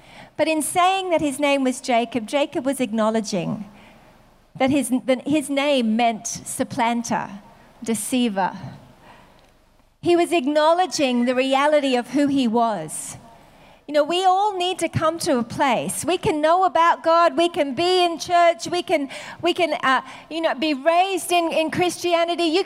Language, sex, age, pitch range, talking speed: English, female, 40-59, 250-340 Hz, 160 wpm